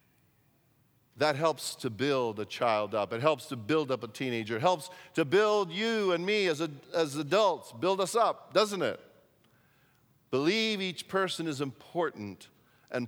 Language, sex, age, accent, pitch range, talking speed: English, male, 50-69, American, 135-200 Hz, 165 wpm